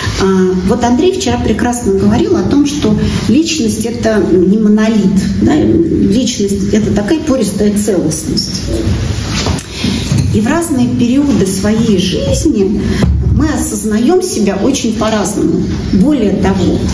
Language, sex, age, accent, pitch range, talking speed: Russian, female, 40-59, native, 180-240 Hz, 105 wpm